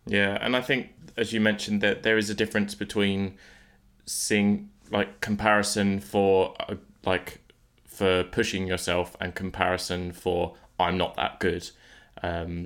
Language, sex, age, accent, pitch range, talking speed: English, male, 20-39, British, 90-105 Hz, 135 wpm